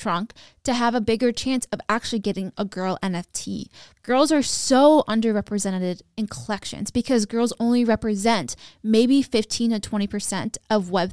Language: English